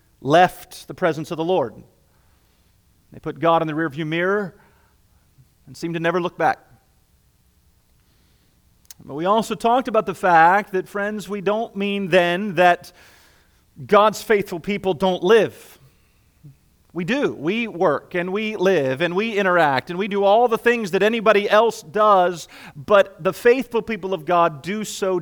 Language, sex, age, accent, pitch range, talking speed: English, male, 40-59, American, 150-190 Hz, 155 wpm